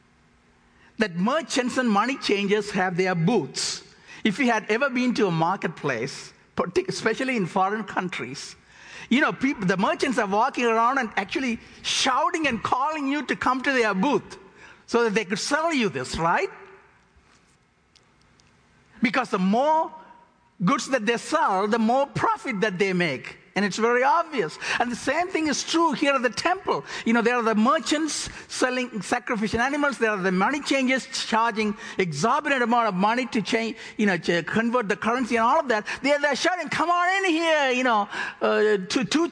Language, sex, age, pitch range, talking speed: English, male, 60-79, 215-285 Hz, 175 wpm